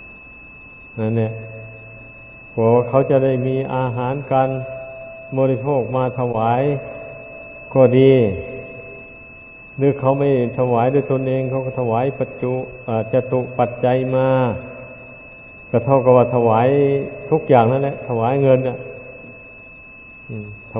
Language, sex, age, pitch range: Thai, male, 60-79, 120-135 Hz